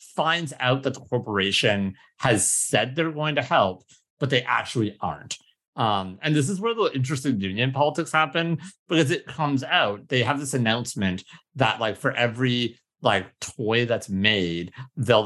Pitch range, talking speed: 110-150 Hz, 165 wpm